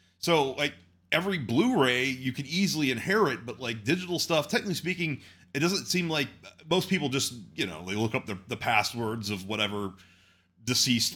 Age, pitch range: 30-49, 90-125 Hz